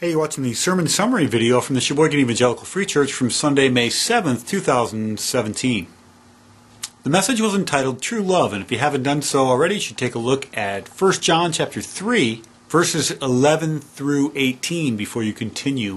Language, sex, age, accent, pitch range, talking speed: English, male, 40-59, American, 110-150 Hz, 185 wpm